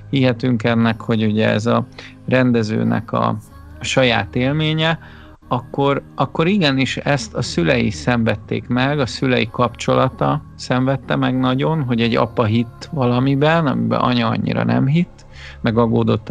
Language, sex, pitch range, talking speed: Hungarian, male, 115-140 Hz, 130 wpm